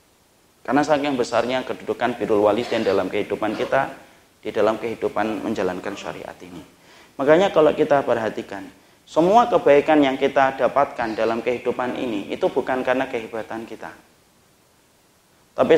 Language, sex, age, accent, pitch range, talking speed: Indonesian, male, 30-49, native, 120-145 Hz, 125 wpm